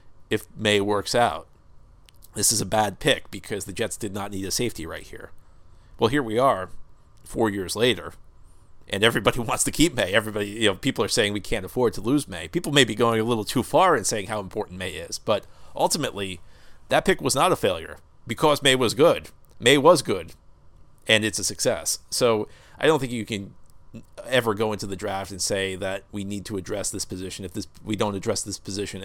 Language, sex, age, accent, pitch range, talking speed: English, male, 40-59, American, 95-115 Hz, 215 wpm